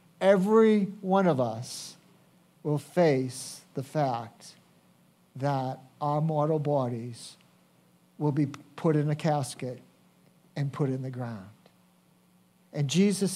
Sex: male